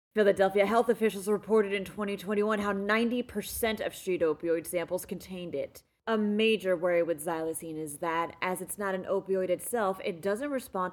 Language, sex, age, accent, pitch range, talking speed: English, female, 30-49, American, 180-265 Hz, 165 wpm